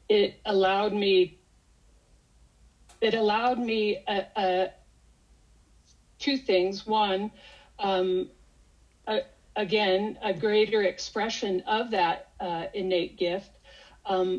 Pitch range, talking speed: 180-215 Hz, 95 wpm